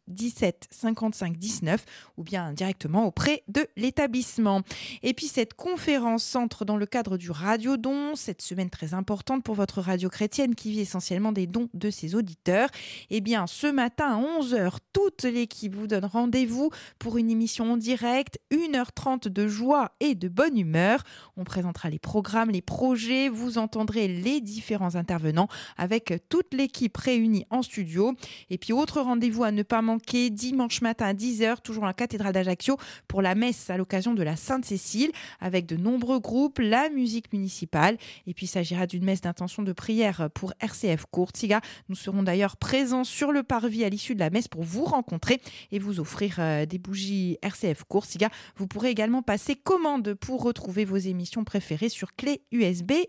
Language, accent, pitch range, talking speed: French, French, 190-255 Hz, 175 wpm